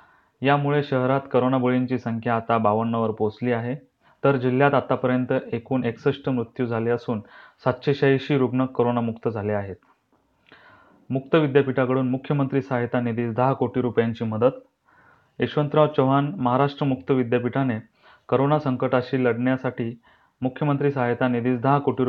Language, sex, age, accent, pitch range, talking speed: Marathi, male, 30-49, native, 120-135 Hz, 120 wpm